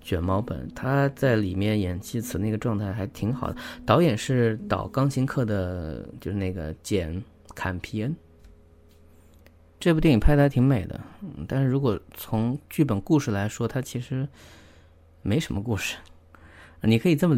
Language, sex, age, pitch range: Chinese, male, 20-39, 80-115 Hz